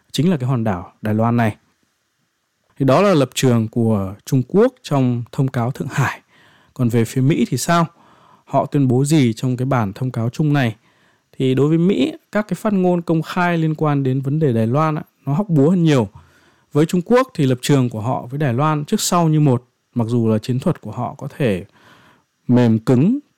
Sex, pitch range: male, 120-165 Hz